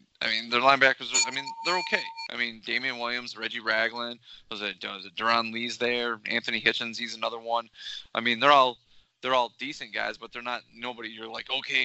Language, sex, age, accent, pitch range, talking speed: English, male, 20-39, American, 105-120 Hz, 215 wpm